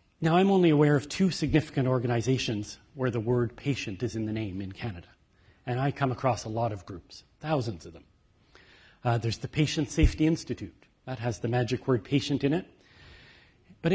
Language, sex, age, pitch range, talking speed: English, male, 40-59, 110-145 Hz, 190 wpm